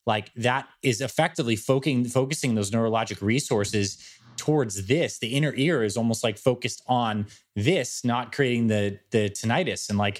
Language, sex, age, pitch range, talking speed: English, male, 20-39, 105-130 Hz, 155 wpm